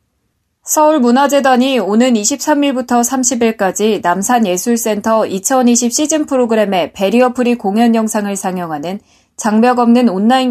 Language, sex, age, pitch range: Korean, female, 20-39, 200-255 Hz